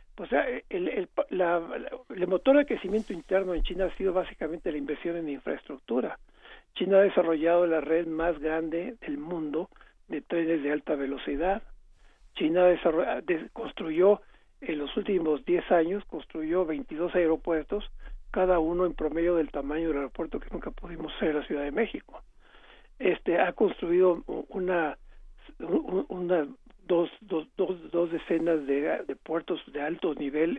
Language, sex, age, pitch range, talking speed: Spanish, male, 60-79, 155-200 Hz, 145 wpm